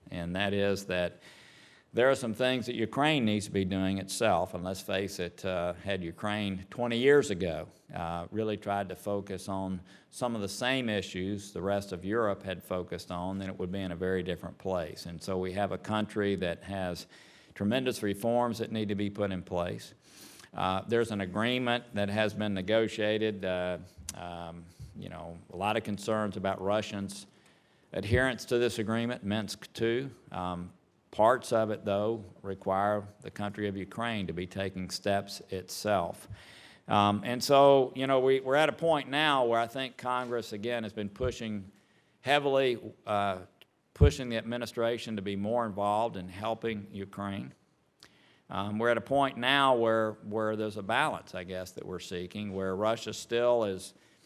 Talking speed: 175 wpm